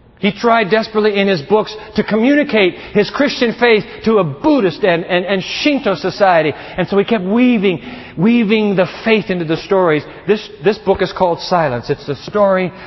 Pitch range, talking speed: 160-210 Hz, 180 wpm